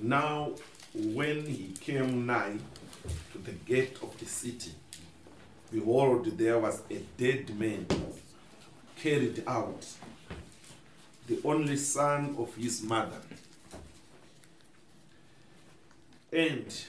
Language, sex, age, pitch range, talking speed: English, male, 50-69, 110-150 Hz, 90 wpm